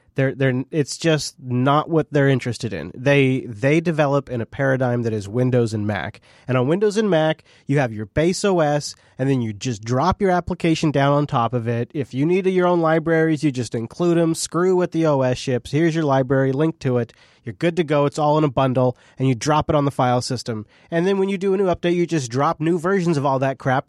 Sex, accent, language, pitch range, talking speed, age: male, American, English, 125-165 Hz, 245 wpm, 30-49